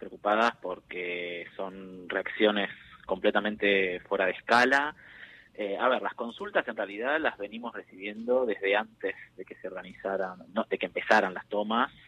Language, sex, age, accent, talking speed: Spanish, male, 20-39, Argentinian, 145 wpm